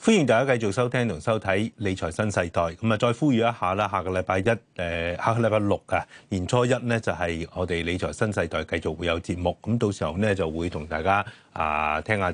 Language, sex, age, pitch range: Chinese, male, 30-49, 85-110 Hz